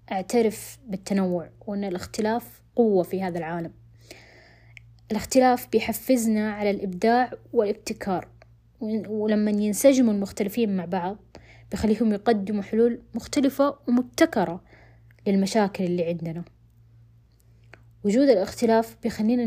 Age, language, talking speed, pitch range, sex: 20-39, Arabic, 90 wpm, 175-225 Hz, female